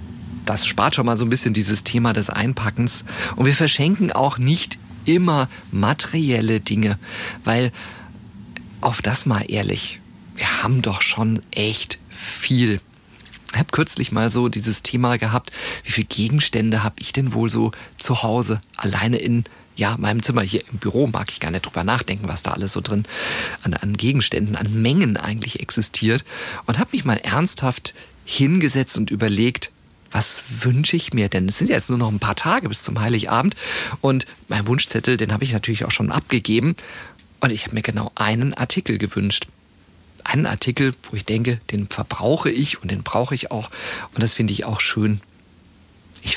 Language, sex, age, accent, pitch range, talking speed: German, male, 40-59, German, 105-125 Hz, 175 wpm